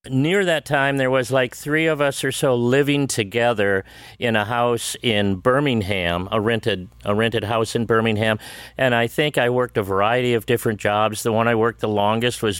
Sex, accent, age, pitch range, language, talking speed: male, American, 50-69, 100-130 Hz, English, 200 wpm